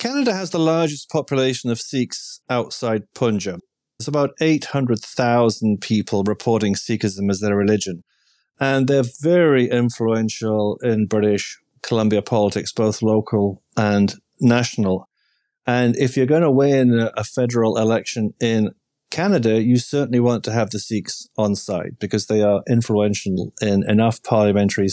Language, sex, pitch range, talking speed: English, male, 105-125 Hz, 135 wpm